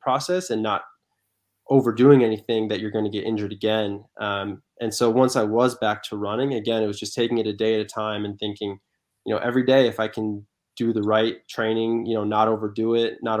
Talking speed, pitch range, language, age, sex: 230 wpm, 105-120 Hz, English, 20-39, male